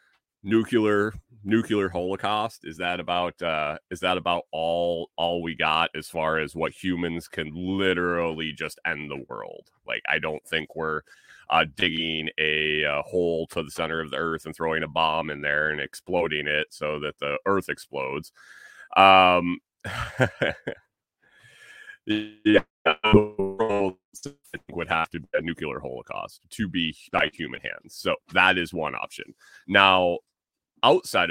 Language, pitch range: English, 80-95 Hz